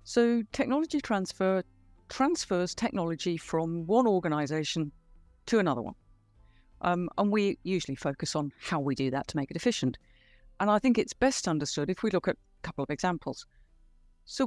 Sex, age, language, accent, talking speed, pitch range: female, 50-69, English, British, 165 wpm, 150-210 Hz